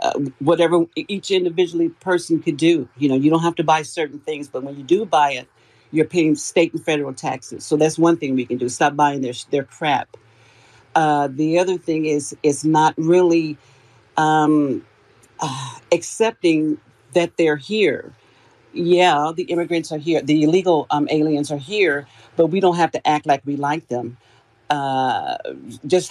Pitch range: 140-170 Hz